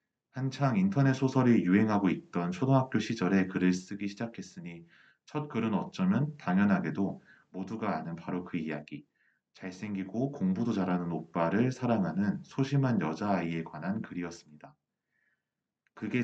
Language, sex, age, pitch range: Korean, male, 30-49, 90-130 Hz